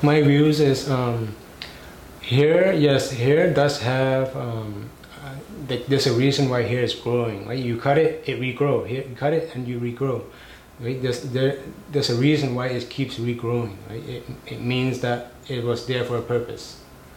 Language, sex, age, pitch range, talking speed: English, male, 20-39, 120-145 Hz, 180 wpm